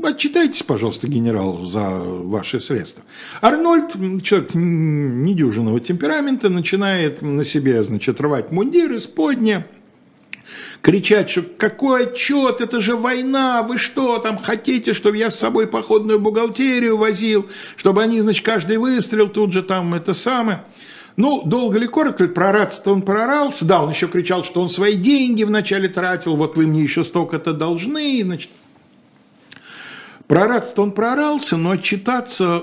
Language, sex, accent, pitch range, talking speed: Russian, male, native, 145-225 Hz, 140 wpm